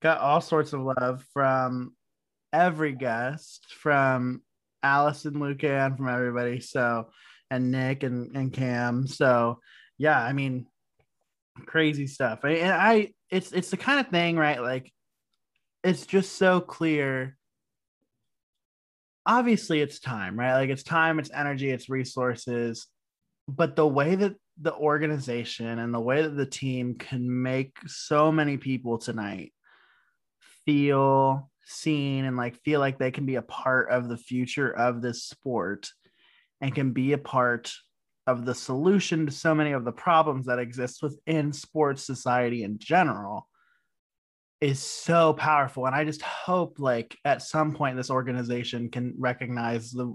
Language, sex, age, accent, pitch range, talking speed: English, male, 20-39, American, 125-155 Hz, 150 wpm